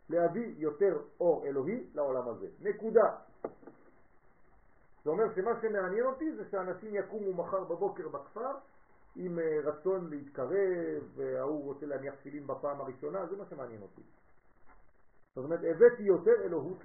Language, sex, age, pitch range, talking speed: French, male, 50-69, 165-275 Hz, 130 wpm